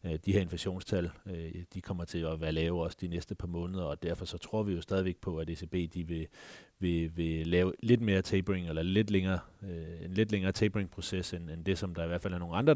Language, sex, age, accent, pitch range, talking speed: Danish, male, 30-49, native, 85-105 Hz, 235 wpm